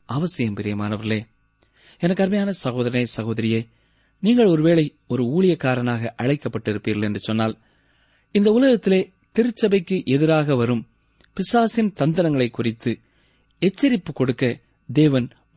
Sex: male